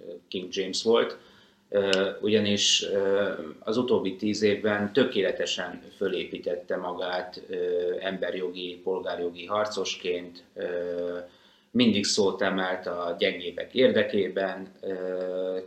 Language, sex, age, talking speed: Hungarian, male, 30-49, 95 wpm